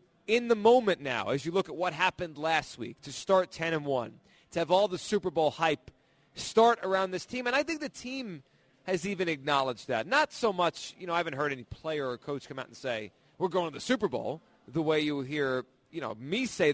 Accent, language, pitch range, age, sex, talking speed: American, English, 140-190 Hz, 30-49, male, 240 wpm